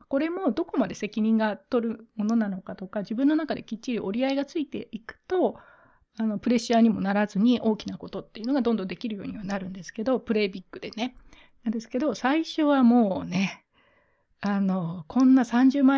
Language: Japanese